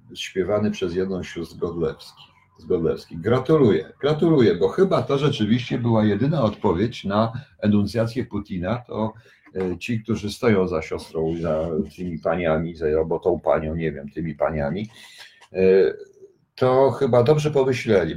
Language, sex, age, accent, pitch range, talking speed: Polish, male, 50-69, native, 95-125 Hz, 125 wpm